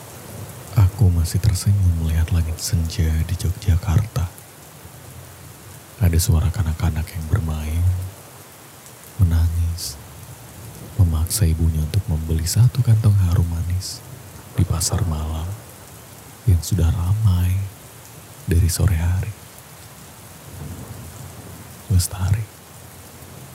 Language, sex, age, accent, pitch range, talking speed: Indonesian, male, 30-49, native, 90-115 Hz, 80 wpm